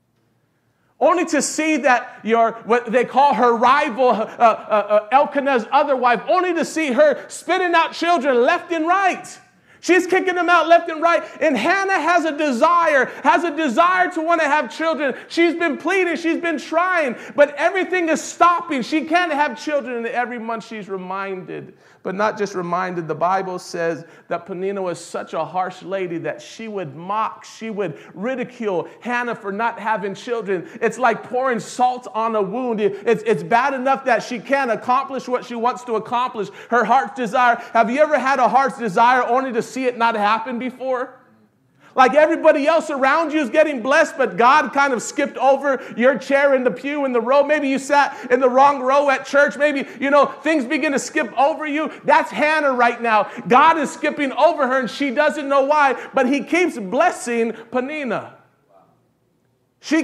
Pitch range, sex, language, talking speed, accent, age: 230-305 Hz, male, English, 190 wpm, American, 40-59